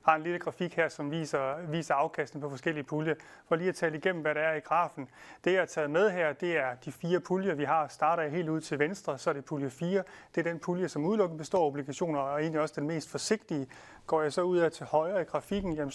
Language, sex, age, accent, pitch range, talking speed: Danish, male, 30-49, native, 150-185 Hz, 265 wpm